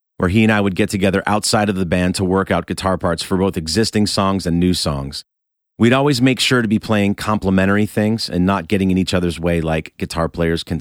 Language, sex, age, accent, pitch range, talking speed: English, male, 40-59, American, 85-110 Hz, 240 wpm